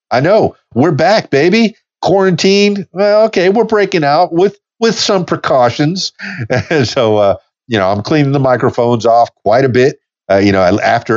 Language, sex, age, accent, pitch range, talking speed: English, male, 50-69, American, 100-155 Hz, 170 wpm